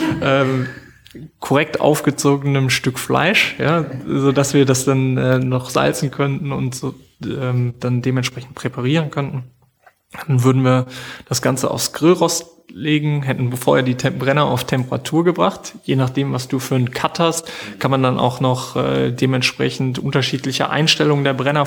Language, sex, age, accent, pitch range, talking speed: German, male, 20-39, German, 125-145 Hz, 155 wpm